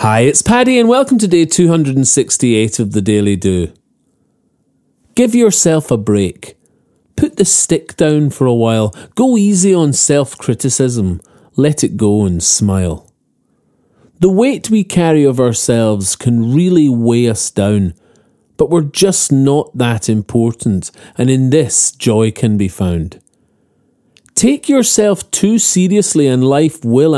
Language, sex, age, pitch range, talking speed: English, male, 40-59, 115-165 Hz, 140 wpm